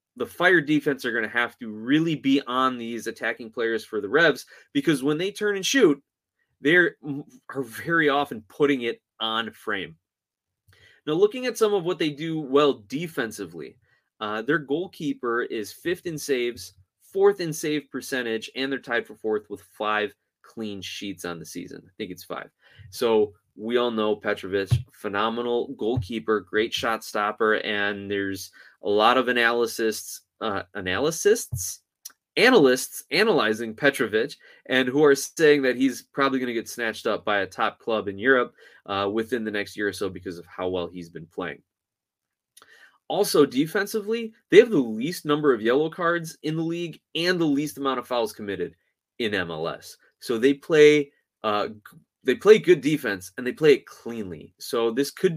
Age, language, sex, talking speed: 20-39, English, male, 170 wpm